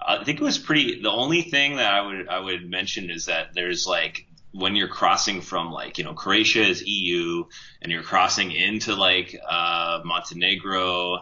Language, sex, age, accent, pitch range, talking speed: English, male, 30-49, American, 85-105 Hz, 185 wpm